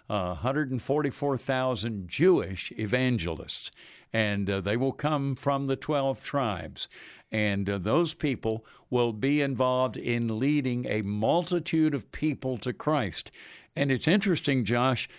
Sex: male